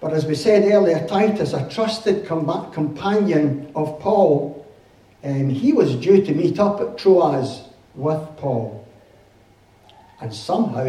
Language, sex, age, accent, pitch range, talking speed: English, male, 60-79, British, 120-160 Hz, 130 wpm